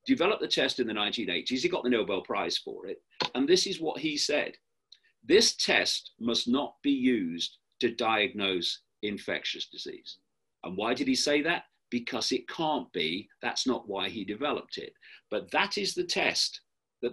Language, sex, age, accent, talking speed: English, male, 40-59, British, 180 wpm